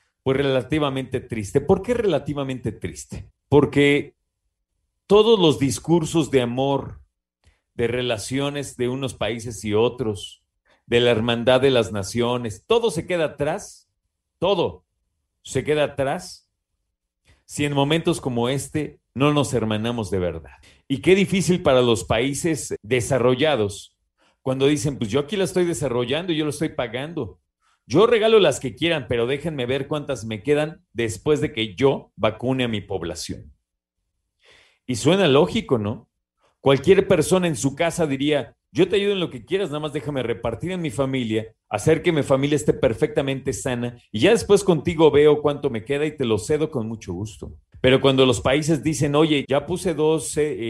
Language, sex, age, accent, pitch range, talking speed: Spanish, male, 40-59, Mexican, 110-155 Hz, 165 wpm